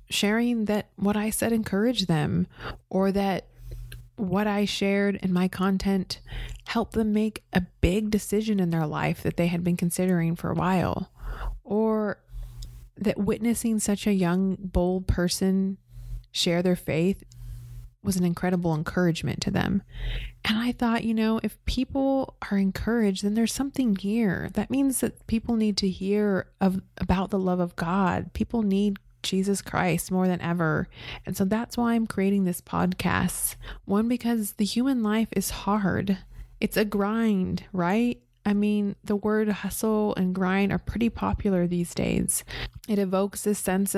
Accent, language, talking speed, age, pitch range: American, English, 160 wpm, 30-49, 175-210 Hz